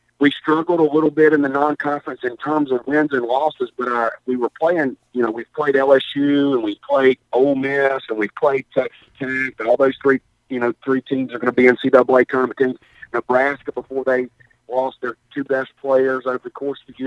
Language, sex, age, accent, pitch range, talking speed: English, male, 50-69, American, 120-140 Hz, 220 wpm